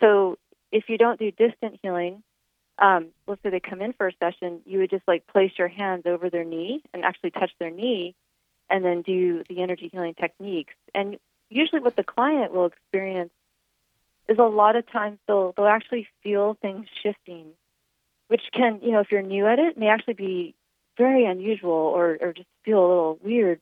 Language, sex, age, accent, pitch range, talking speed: English, female, 30-49, American, 175-210 Hz, 195 wpm